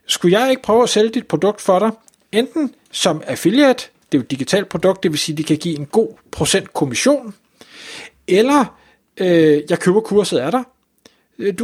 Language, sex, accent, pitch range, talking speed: Danish, male, native, 160-210 Hz, 190 wpm